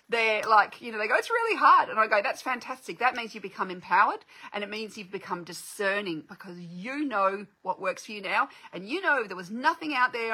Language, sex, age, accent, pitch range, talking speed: English, female, 40-59, Australian, 200-280 Hz, 240 wpm